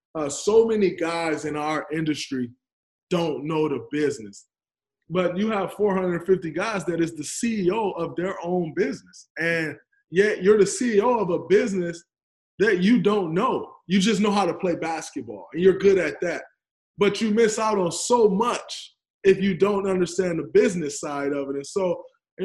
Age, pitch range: 20-39, 160-210 Hz